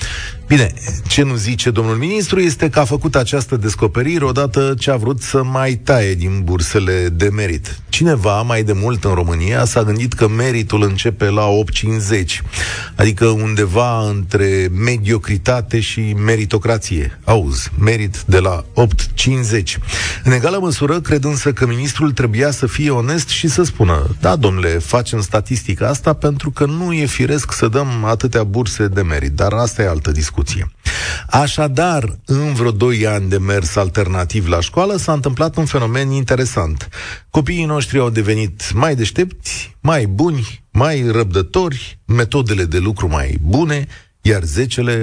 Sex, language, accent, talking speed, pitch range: male, Romanian, native, 150 wpm, 100-130 Hz